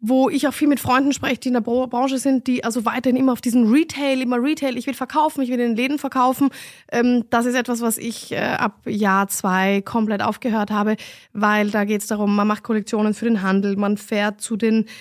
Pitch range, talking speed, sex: 205-240 Hz, 225 wpm, female